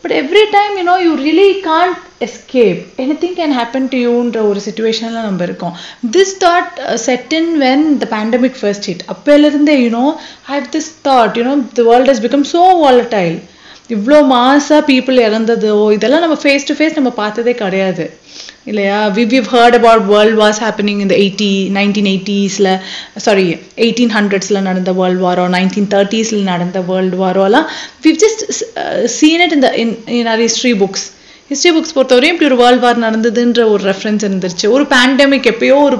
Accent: native